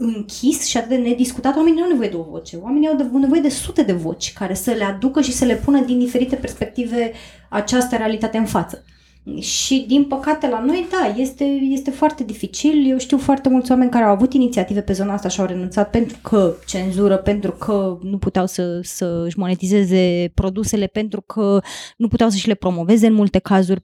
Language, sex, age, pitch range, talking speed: Romanian, female, 20-39, 200-250 Hz, 205 wpm